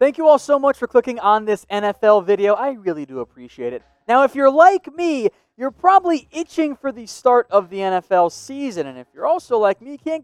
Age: 20-39